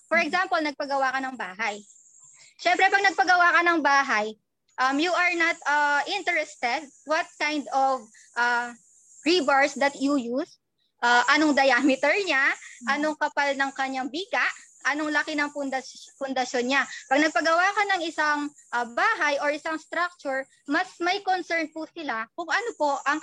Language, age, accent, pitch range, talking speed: Filipino, 20-39, native, 265-320 Hz, 150 wpm